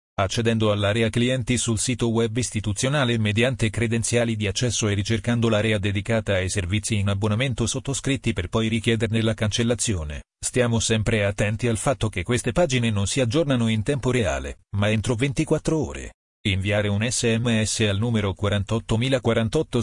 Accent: native